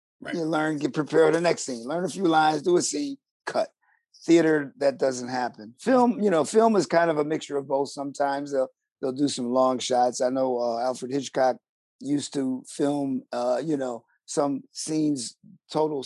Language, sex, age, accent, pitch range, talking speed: English, male, 50-69, American, 125-155 Hz, 195 wpm